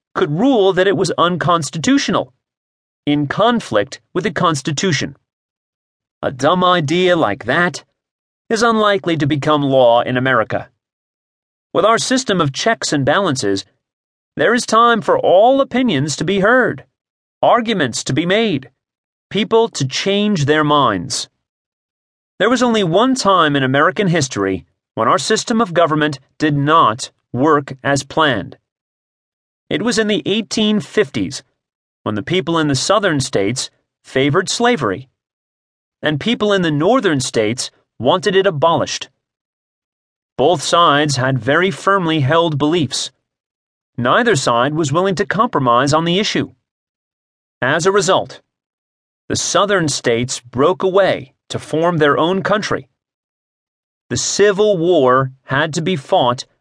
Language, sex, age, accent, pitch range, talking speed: English, male, 30-49, American, 140-200 Hz, 130 wpm